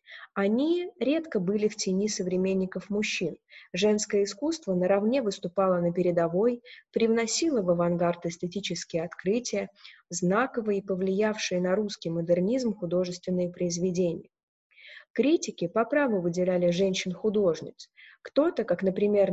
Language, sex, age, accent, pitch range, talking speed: Russian, female, 20-39, native, 180-215 Hz, 105 wpm